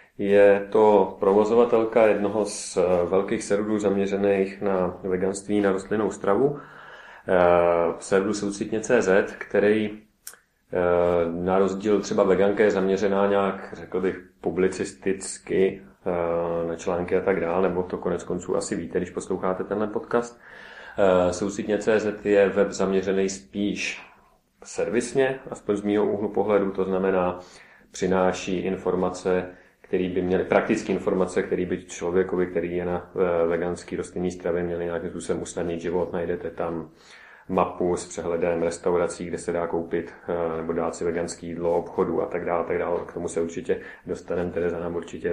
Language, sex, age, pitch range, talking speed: Czech, male, 30-49, 90-105 Hz, 140 wpm